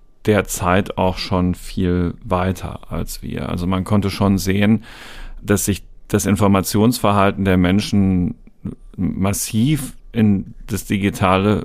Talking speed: 115 wpm